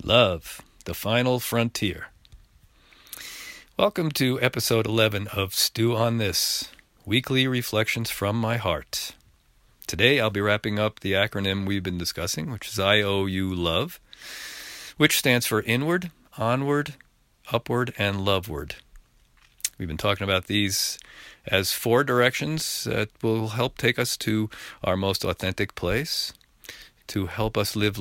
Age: 40-59